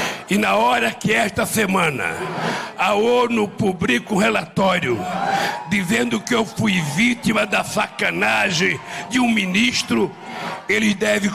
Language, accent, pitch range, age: Portuguese, Brazilian, 185-215 Hz, 60-79